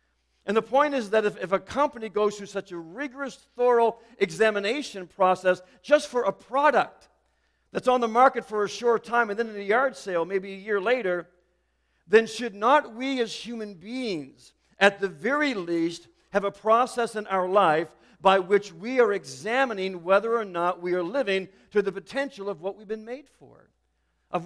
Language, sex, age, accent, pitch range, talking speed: English, male, 50-69, American, 185-235 Hz, 190 wpm